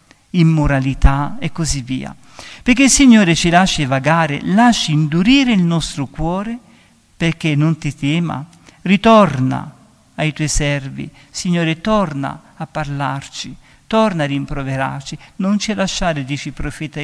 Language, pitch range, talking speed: Italian, 145-195 Hz, 125 wpm